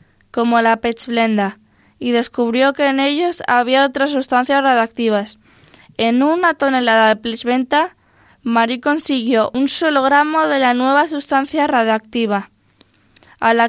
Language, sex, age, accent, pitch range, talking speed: Spanish, female, 10-29, Spanish, 220-265 Hz, 125 wpm